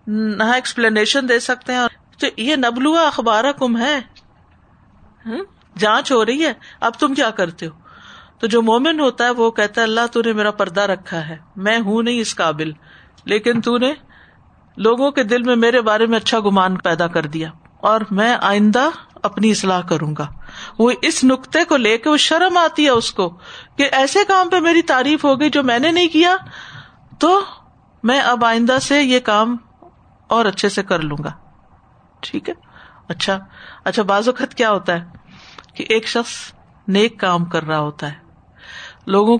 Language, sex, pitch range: Urdu, female, 195-265 Hz